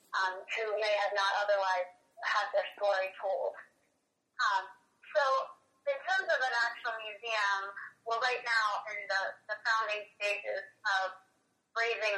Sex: female